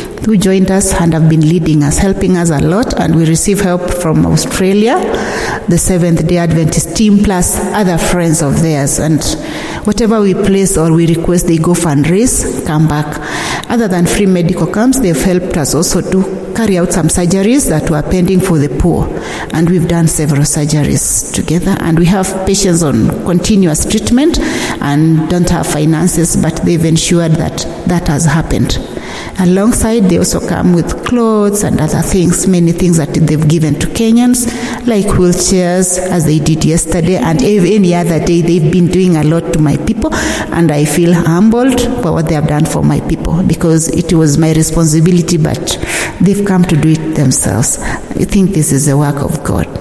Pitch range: 160-190 Hz